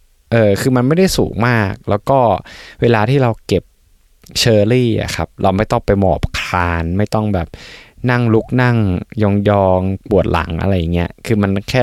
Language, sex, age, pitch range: Thai, male, 20-39, 90-110 Hz